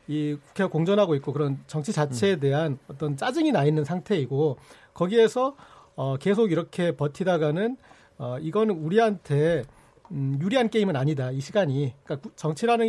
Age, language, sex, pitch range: 40-59, Korean, male, 145-210 Hz